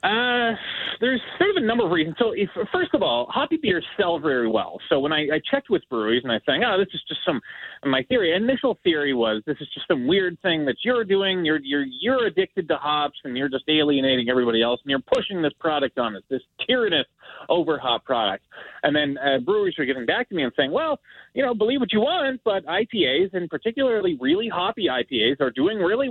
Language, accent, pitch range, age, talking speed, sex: English, American, 125-195 Hz, 30-49, 230 wpm, male